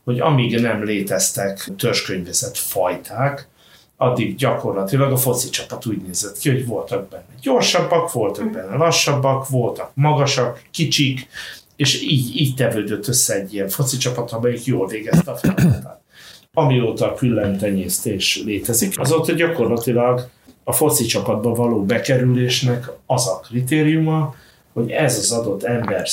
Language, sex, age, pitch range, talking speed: Hungarian, male, 60-79, 110-135 Hz, 130 wpm